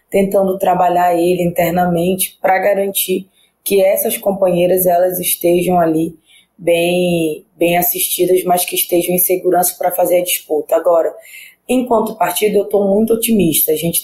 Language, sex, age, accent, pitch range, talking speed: Portuguese, female, 20-39, Brazilian, 175-200 Hz, 140 wpm